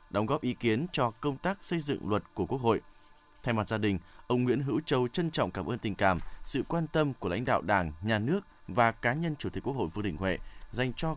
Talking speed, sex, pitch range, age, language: 260 wpm, male, 105-145 Hz, 20-39, Vietnamese